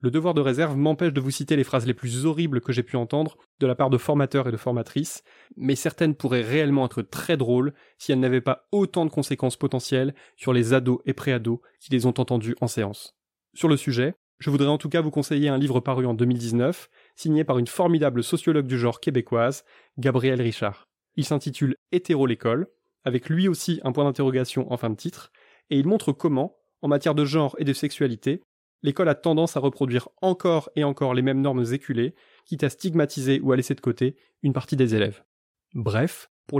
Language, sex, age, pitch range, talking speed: French, male, 20-39, 125-155 Hz, 210 wpm